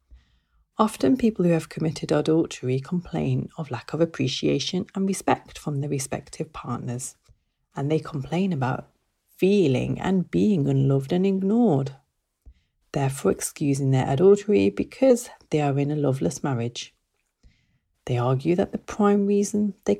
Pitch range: 135-195 Hz